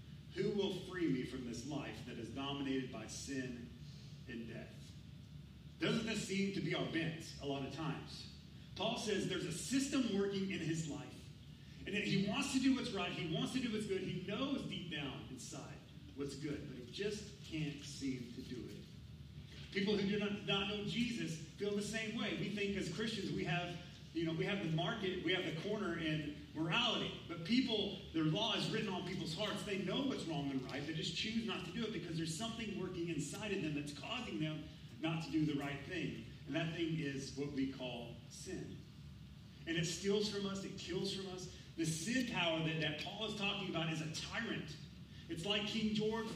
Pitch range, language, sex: 145-200 Hz, English, male